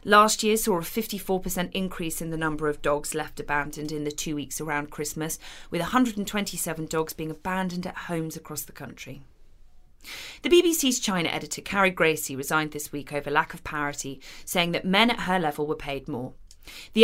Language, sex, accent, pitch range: English, female, British, 150-225 Hz